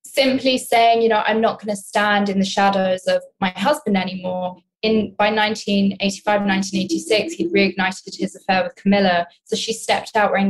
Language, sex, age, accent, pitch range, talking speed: English, female, 20-39, British, 190-225 Hz, 175 wpm